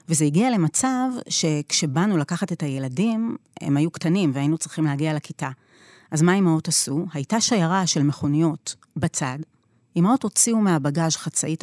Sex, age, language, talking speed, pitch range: female, 30-49, Hebrew, 140 wpm, 155-205 Hz